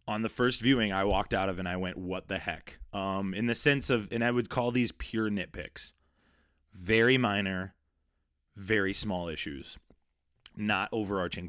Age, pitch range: 20-39, 90-120 Hz